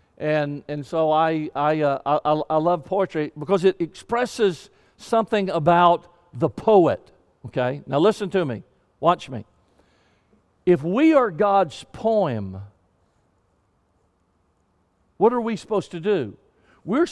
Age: 50-69